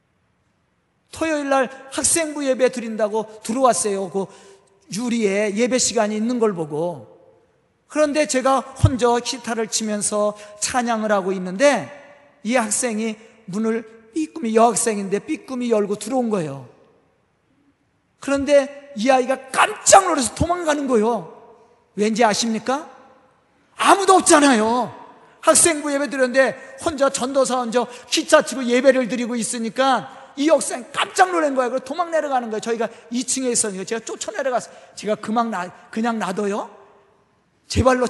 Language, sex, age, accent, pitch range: Korean, male, 40-59, native, 200-265 Hz